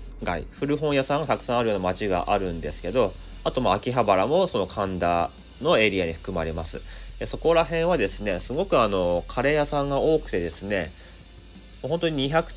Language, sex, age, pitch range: Japanese, male, 30-49, 90-135 Hz